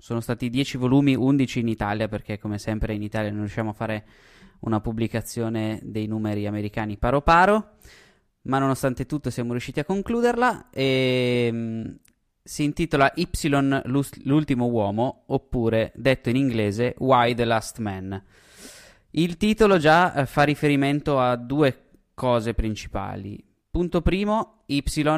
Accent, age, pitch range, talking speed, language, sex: native, 20-39, 110-135 Hz, 130 wpm, Italian, male